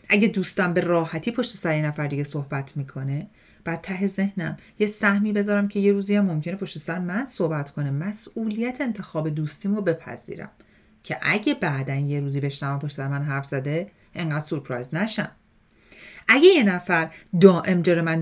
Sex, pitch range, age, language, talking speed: female, 160-210 Hz, 40-59, Persian, 170 wpm